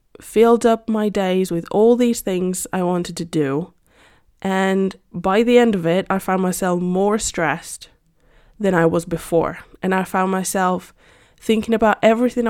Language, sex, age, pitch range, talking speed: English, female, 10-29, 175-205 Hz, 165 wpm